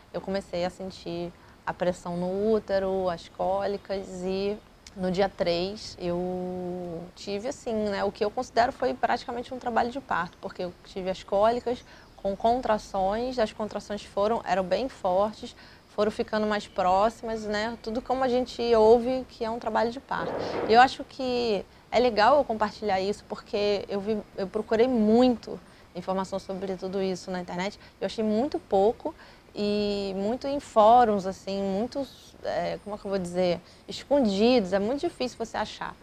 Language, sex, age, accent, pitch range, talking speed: Portuguese, female, 20-39, Brazilian, 185-220 Hz, 165 wpm